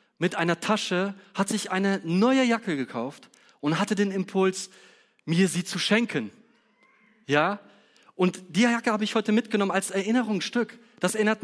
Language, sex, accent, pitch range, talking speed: German, male, German, 160-210 Hz, 150 wpm